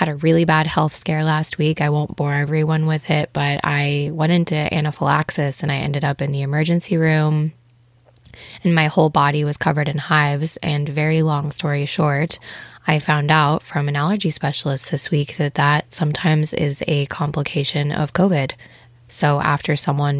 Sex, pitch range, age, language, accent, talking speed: female, 145-160 Hz, 20-39, English, American, 180 wpm